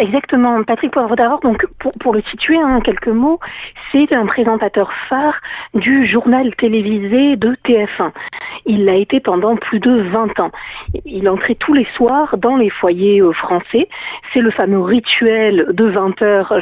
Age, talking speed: 50-69, 165 wpm